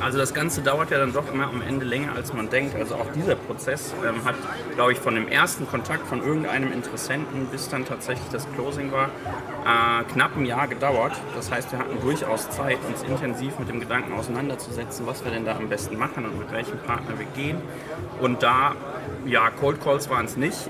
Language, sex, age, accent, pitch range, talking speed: German, male, 30-49, German, 115-135 Hz, 210 wpm